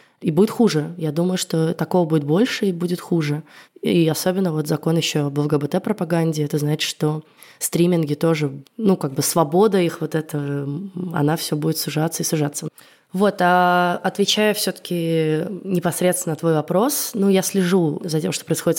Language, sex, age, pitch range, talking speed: Russian, female, 20-39, 145-180 Hz, 165 wpm